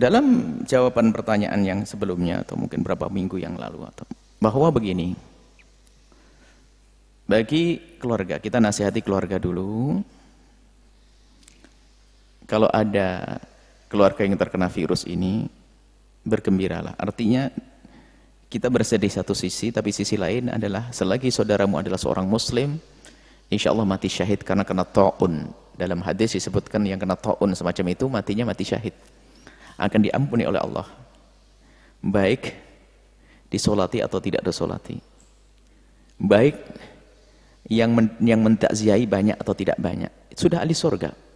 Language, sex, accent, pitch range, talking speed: Indonesian, male, native, 95-120 Hz, 120 wpm